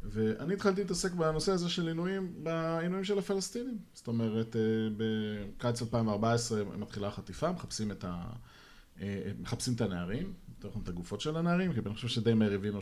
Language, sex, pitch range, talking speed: Hebrew, male, 110-145 Hz, 155 wpm